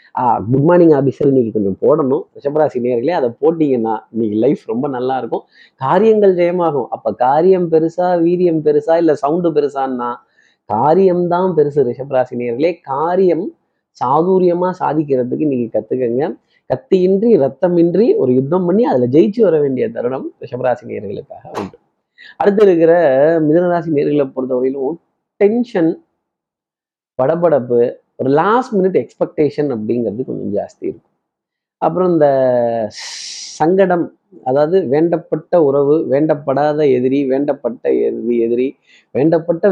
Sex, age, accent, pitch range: male, 30-49, native, 130-175 Hz